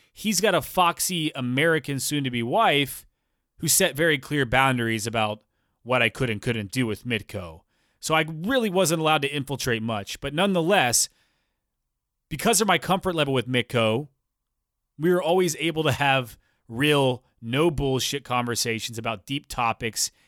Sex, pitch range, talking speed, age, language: male, 115-155 Hz, 150 wpm, 30-49, English